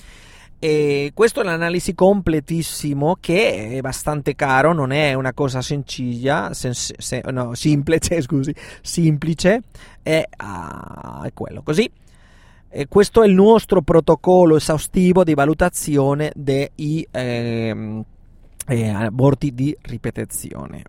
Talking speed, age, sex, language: 100 wpm, 30-49, male, Italian